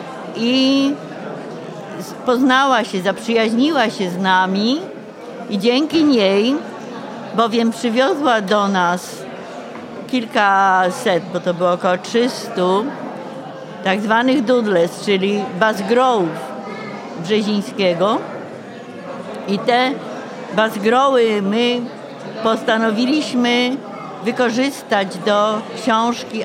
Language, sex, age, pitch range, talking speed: Polish, female, 50-69, 195-240 Hz, 75 wpm